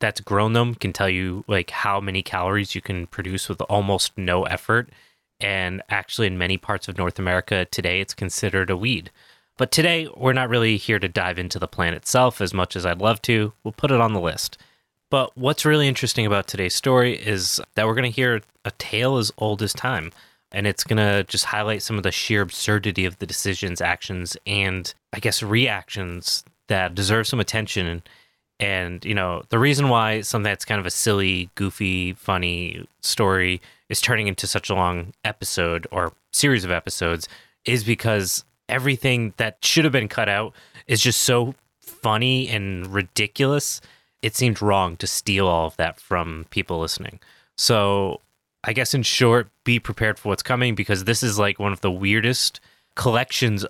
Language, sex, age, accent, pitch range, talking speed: English, male, 20-39, American, 95-115 Hz, 190 wpm